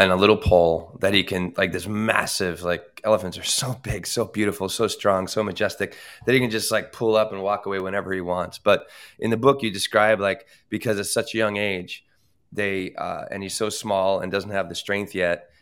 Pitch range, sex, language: 95-110 Hz, male, English